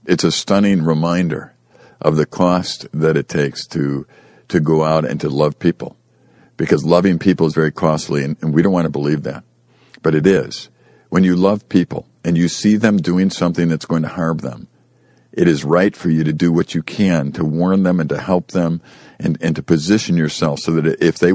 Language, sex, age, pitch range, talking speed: English, male, 50-69, 80-90 Hz, 215 wpm